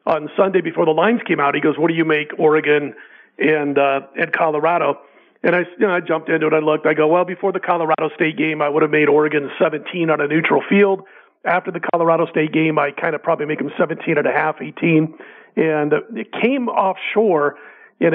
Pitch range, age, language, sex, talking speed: 155-185 Hz, 40-59, English, male, 220 wpm